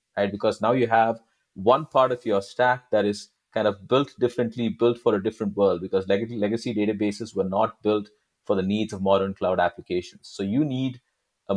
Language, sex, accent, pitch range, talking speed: English, male, Indian, 100-115 Hz, 195 wpm